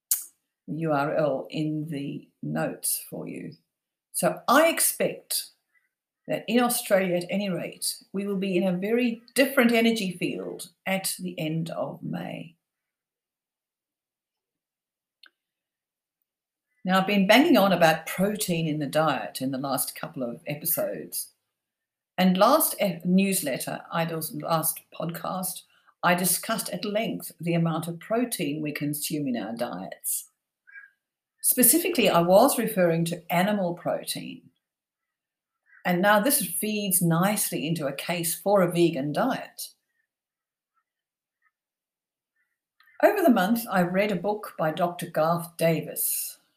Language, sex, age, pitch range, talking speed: English, female, 50-69, 165-230 Hz, 120 wpm